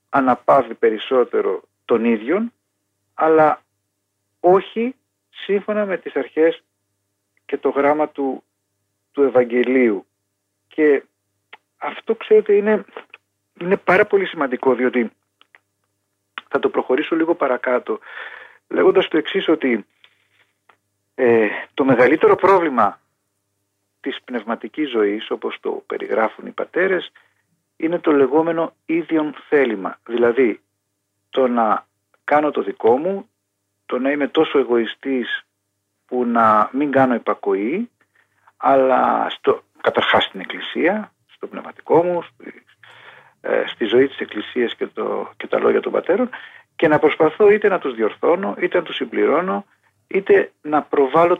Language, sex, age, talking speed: Greek, male, 40-59, 115 wpm